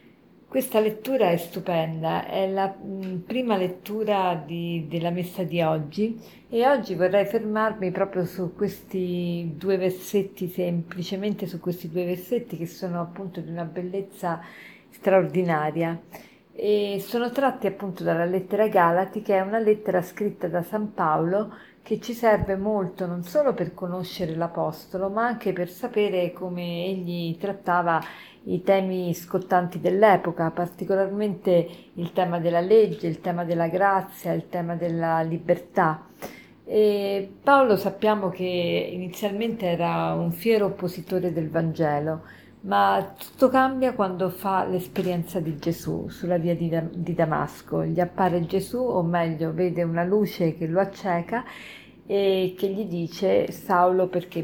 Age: 40-59